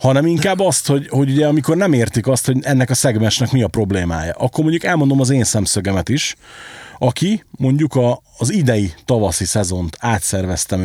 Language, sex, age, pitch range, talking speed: Hungarian, male, 40-59, 105-145 Hz, 175 wpm